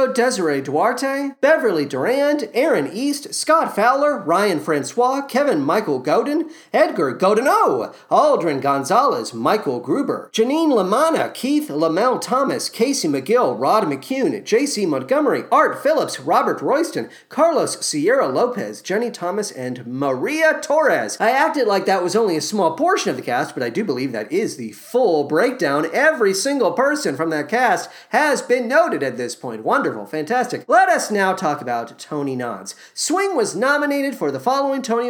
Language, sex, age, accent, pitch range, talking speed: English, male, 40-59, American, 220-290 Hz, 155 wpm